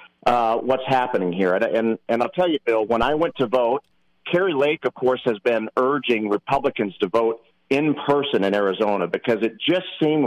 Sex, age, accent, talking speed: male, 50-69, American, 200 wpm